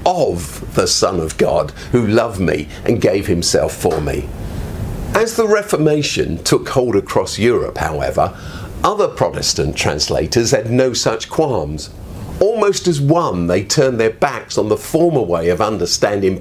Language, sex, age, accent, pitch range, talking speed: English, male, 50-69, British, 100-155 Hz, 150 wpm